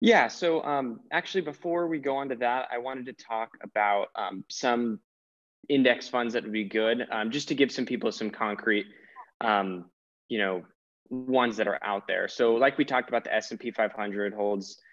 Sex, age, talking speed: male, 20-39, 195 wpm